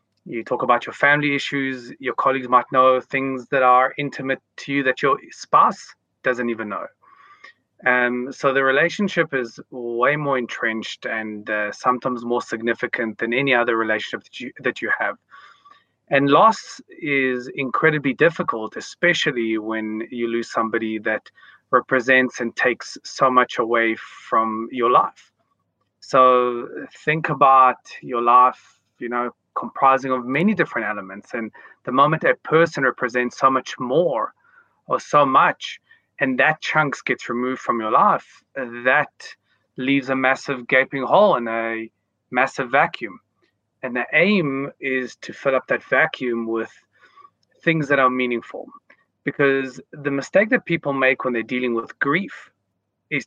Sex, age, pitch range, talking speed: male, 30-49, 120-140 Hz, 150 wpm